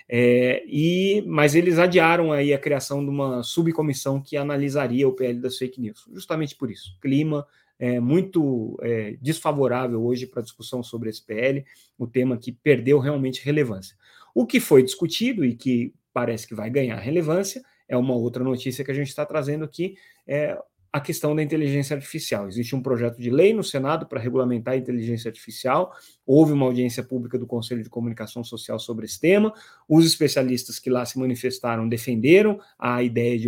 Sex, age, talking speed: male, 30-49, 180 wpm